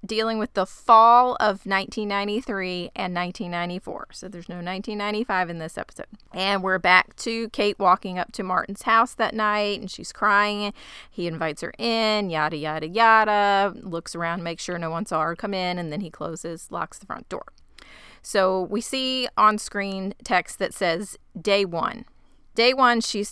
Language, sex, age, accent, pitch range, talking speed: English, female, 30-49, American, 175-215 Hz, 175 wpm